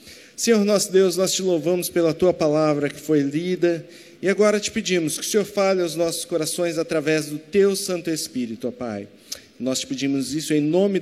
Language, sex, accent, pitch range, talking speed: Portuguese, male, Brazilian, 175-225 Hz, 195 wpm